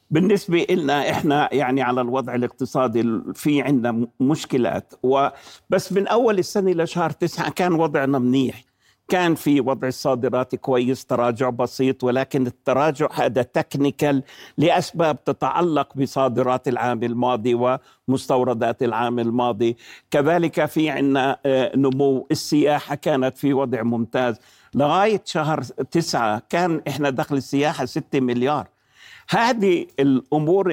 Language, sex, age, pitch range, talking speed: Arabic, male, 60-79, 125-160 Hz, 115 wpm